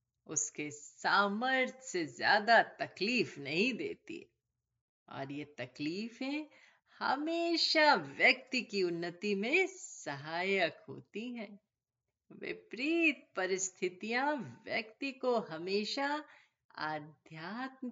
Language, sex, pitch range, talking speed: Hindi, female, 170-275 Hz, 85 wpm